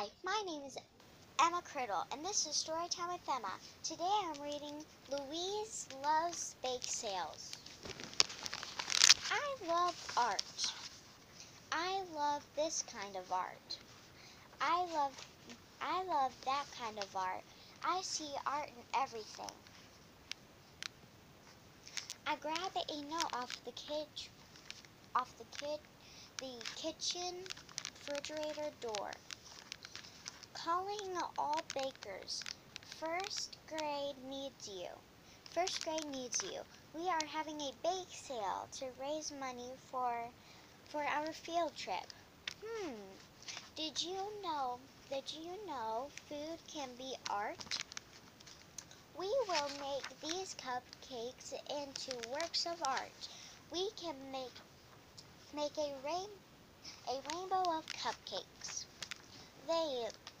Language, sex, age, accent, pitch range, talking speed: English, male, 10-29, American, 270-340 Hz, 110 wpm